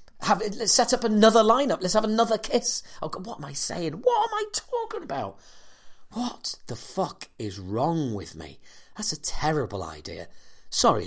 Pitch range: 100-160 Hz